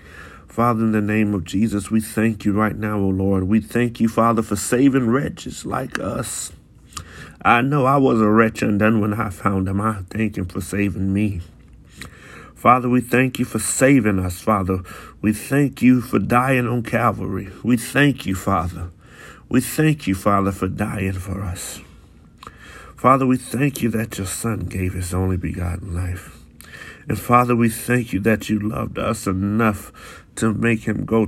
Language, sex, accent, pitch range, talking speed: English, male, American, 95-120 Hz, 180 wpm